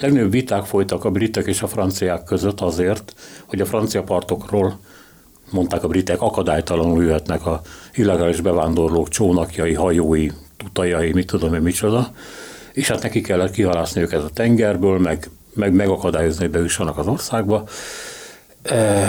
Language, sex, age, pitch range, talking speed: Hungarian, male, 60-79, 85-110 Hz, 140 wpm